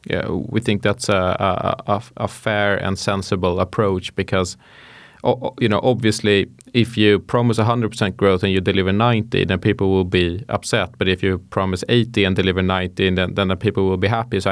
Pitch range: 95-115 Hz